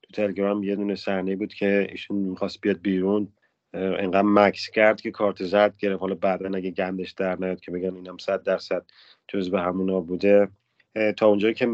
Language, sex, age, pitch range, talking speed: Persian, male, 30-49, 95-115 Hz, 180 wpm